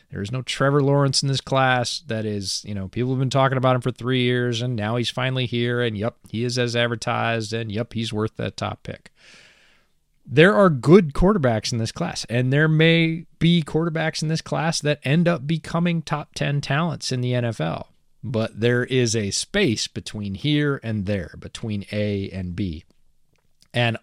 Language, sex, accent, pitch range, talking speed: English, male, American, 110-145 Hz, 195 wpm